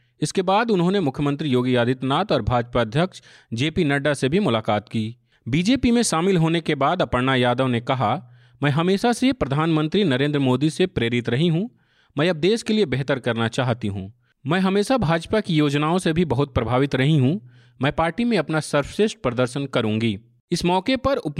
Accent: native